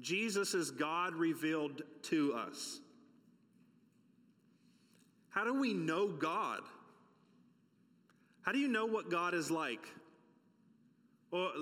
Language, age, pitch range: English, 30-49, 120-190 Hz